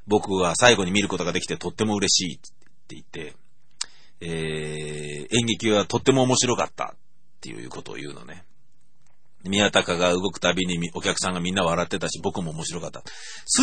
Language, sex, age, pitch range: Japanese, male, 40-59, 85-110 Hz